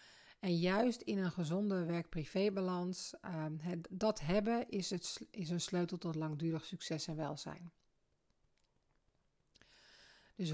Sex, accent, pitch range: female, Dutch, 160-200 Hz